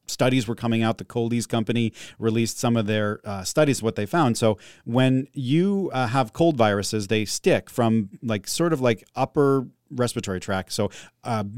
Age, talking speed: 40-59, 180 wpm